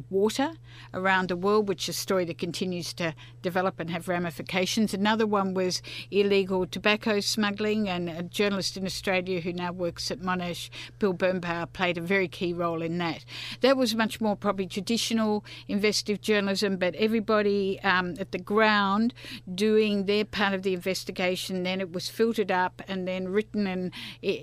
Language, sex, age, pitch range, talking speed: English, female, 50-69, 180-210 Hz, 170 wpm